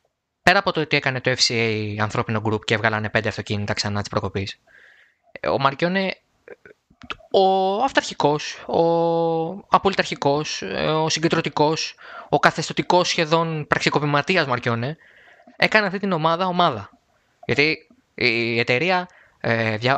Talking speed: 120 wpm